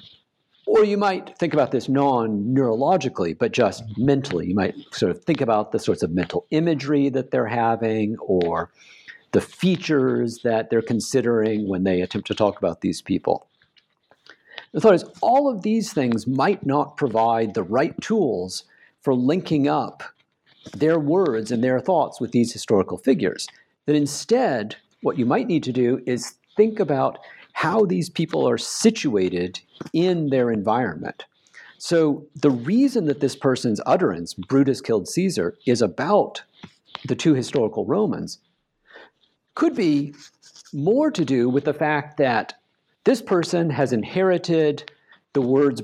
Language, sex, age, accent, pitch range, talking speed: English, male, 50-69, American, 115-170 Hz, 150 wpm